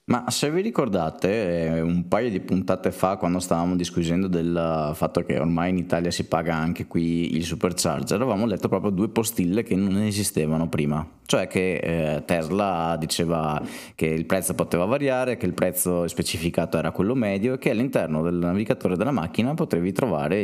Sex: male